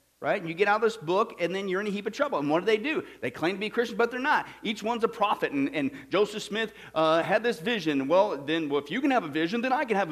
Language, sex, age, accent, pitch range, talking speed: English, male, 50-69, American, 150-225 Hz, 320 wpm